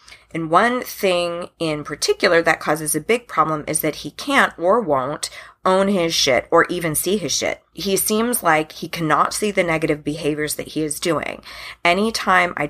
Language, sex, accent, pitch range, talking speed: English, female, American, 155-205 Hz, 185 wpm